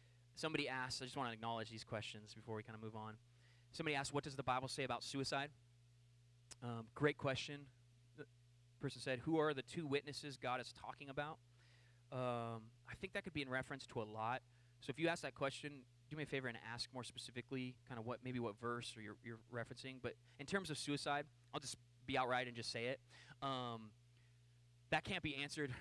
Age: 20-39